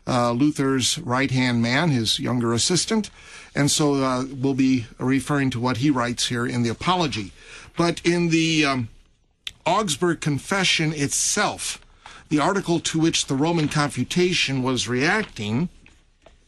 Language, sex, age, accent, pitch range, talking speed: English, male, 50-69, American, 125-155 Hz, 140 wpm